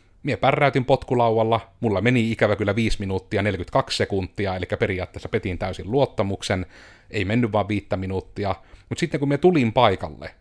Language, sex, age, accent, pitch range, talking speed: Finnish, male, 30-49, native, 95-120 Hz, 155 wpm